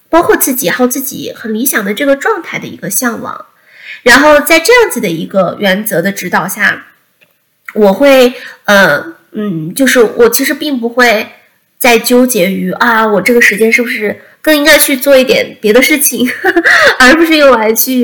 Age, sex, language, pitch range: 20-39, female, Chinese, 210-285 Hz